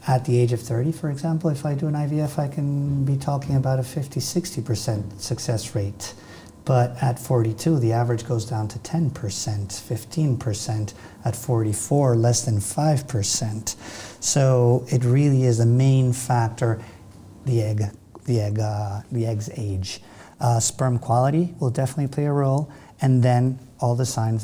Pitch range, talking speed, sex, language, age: 110-130 Hz, 170 wpm, male, English, 50-69